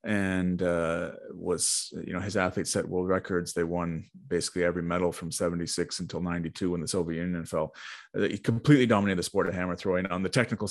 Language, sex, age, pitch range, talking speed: English, male, 30-49, 90-105 Hz, 195 wpm